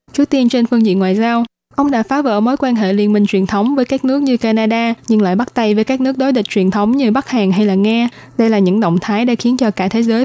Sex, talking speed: female, 300 wpm